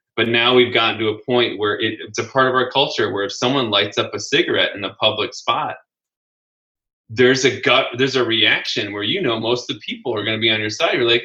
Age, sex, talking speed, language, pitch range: 20-39, male, 250 wpm, English, 105-125 Hz